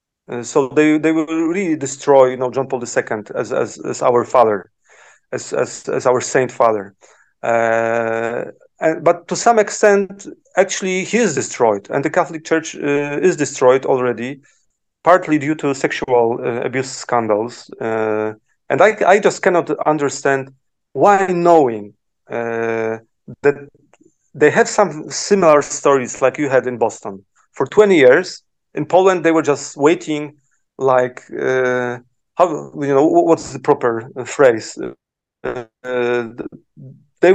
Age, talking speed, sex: 40-59, 145 wpm, male